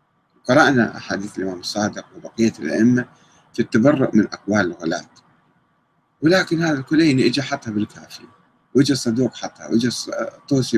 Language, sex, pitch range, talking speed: Arabic, male, 110-150 Hz, 115 wpm